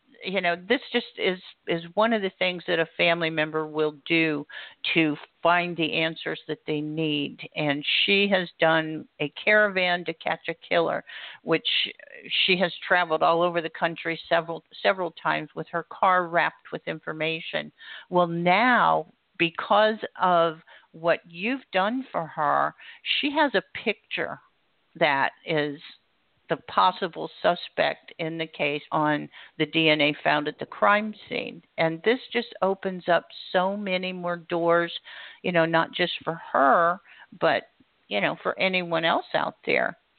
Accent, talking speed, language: American, 150 wpm, English